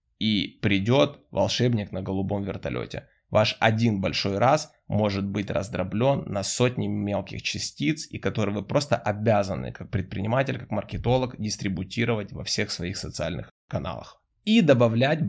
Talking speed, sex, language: 135 wpm, male, Ukrainian